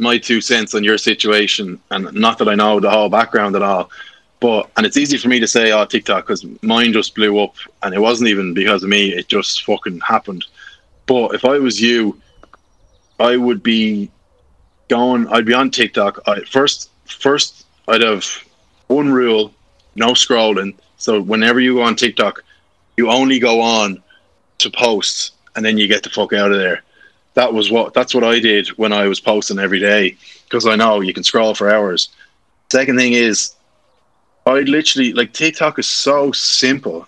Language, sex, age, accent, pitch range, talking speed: English, male, 20-39, Irish, 105-130 Hz, 190 wpm